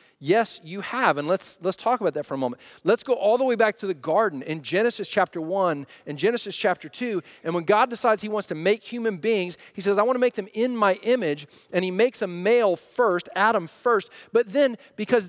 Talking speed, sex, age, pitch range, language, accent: 230 wpm, male, 40-59, 170-230 Hz, English, American